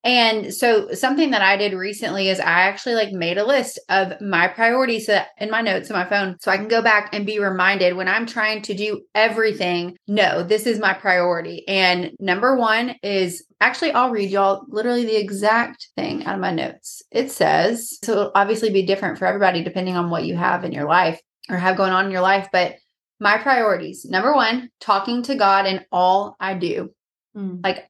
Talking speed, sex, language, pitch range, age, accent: 200 wpm, female, English, 185-215 Hz, 20-39, American